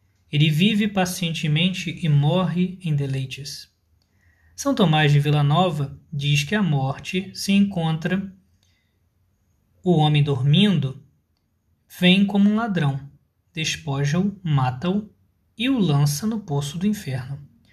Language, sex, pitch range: Portuguese, male, 140-180 Hz